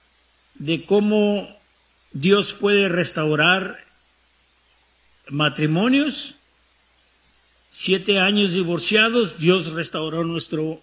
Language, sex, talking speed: English, male, 65 wpm